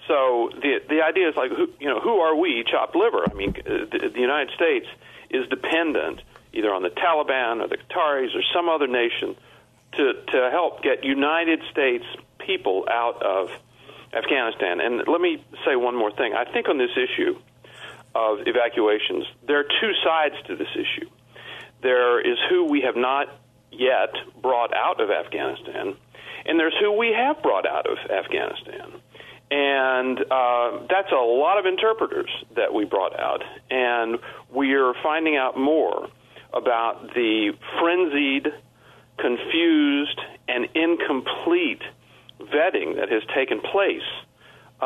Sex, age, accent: male, 50-69, American